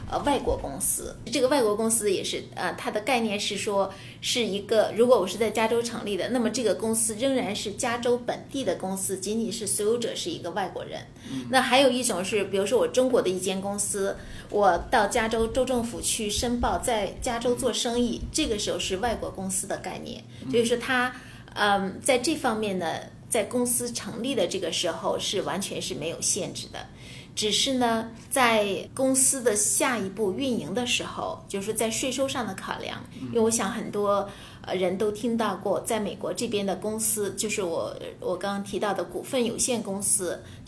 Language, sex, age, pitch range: Chinese, female, 20-39, 200-245 Hz